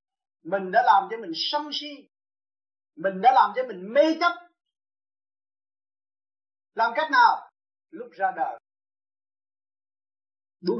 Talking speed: 115 wpm